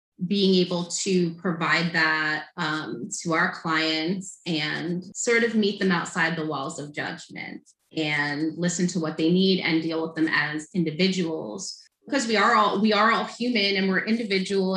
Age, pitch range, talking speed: 20-39, 155-190 Hz, 165 wpm